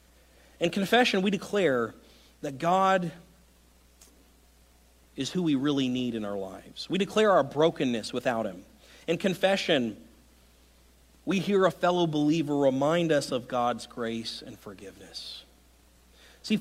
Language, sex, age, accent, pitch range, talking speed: English, male, 40-59, American, 120-190 Hz, 125 wpm